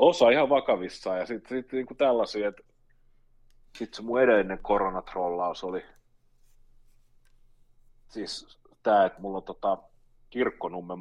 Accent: native